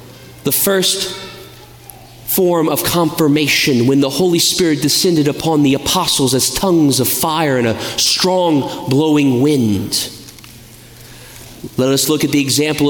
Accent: American